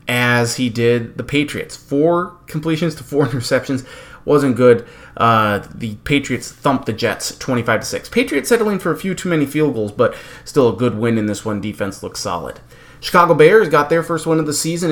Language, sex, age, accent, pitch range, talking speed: English, male, 30-49, American, 115-150 Hz, 195 wpm